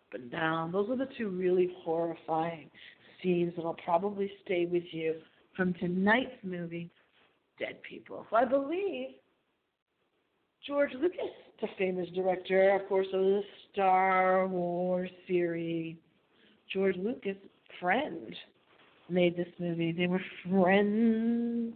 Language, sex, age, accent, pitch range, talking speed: English, female, 50-69, American, 180-260 Hz, 120 wpm